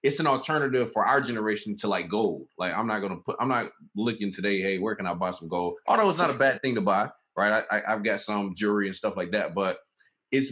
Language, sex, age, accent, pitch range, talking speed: English, male, 20-39, American, 105-125 Hz, 270 wpm